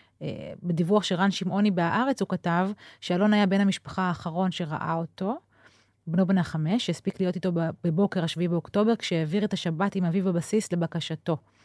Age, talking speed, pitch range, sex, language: 30-49, 155 wpm, 160-195 Hz, female, Hebrew